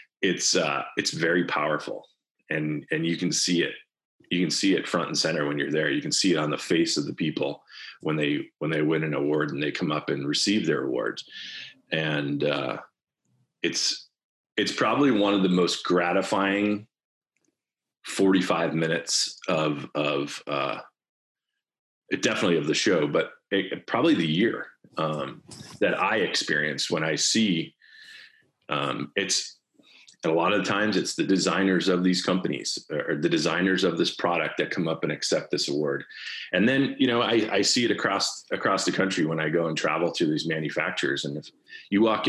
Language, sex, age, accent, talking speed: English, male, 40-59, American, 180 wpm